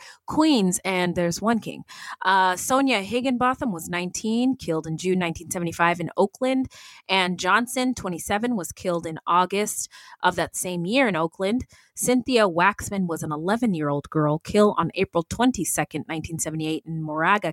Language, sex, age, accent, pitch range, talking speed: English, female, 20-39, American, 165-215 Hz, 145 wpm